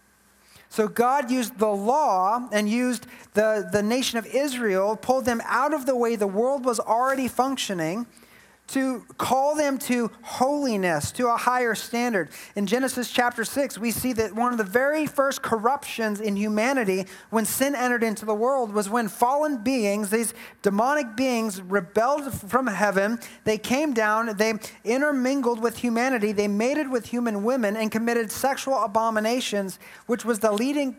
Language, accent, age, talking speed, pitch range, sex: English, American, 30-49, 160 wpm, 200-245 Hz, male